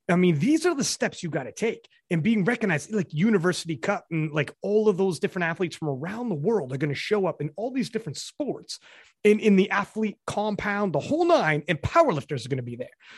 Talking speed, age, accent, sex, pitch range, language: 235 wpm, 30-49, American, male, 160-225 Hz, English